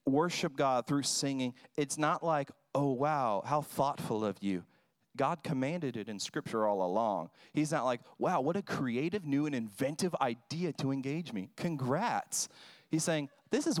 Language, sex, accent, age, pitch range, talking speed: English, male, American, 40-59, 120-155 Hz, 170 wpm